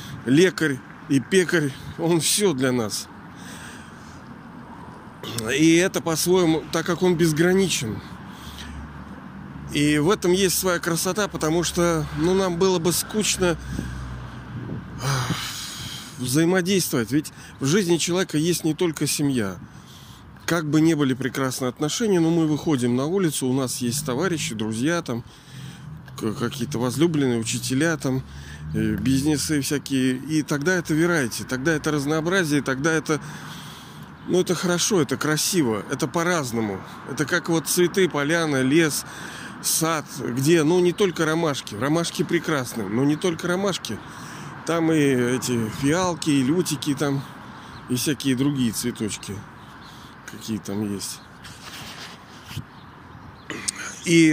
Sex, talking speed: male, 120 wpm